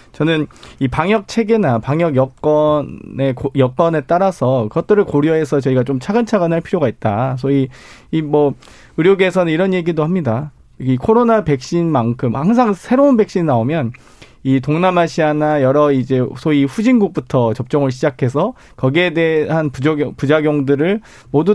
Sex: male